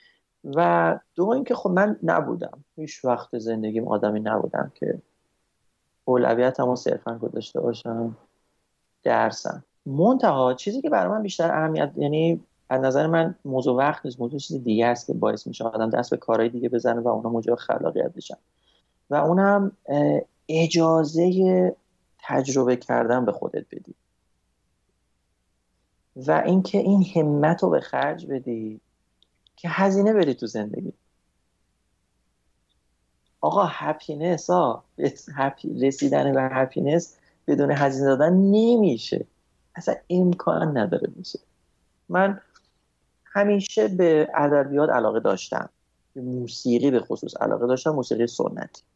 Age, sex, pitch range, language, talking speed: 30-49, male, 115-165 Hz, Persian, 120 wpm